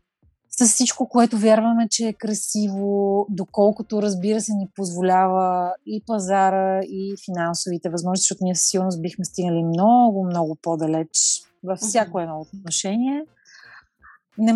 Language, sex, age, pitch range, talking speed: Bulgarian, female, 30-49, 185-210 Hz, 125 wpm